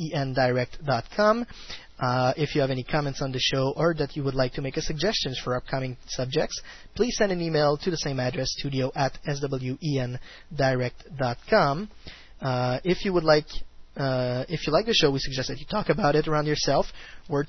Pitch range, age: 130-160 Hz, 20-39